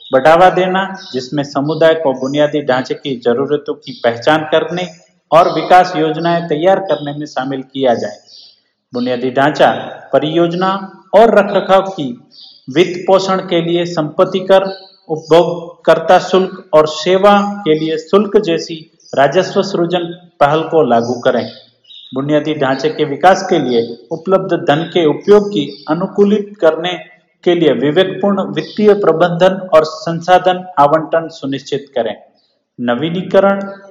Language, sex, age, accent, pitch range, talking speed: Hindi, male, 50-69, native, 150-185 Hz, 125 wpm